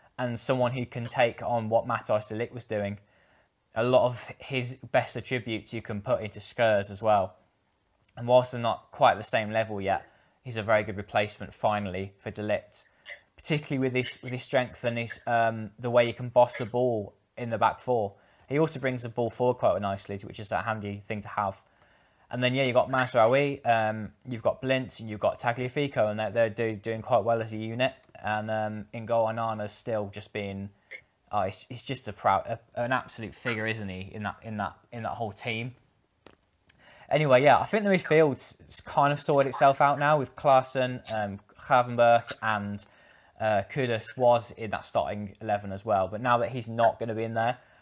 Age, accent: 10-29, British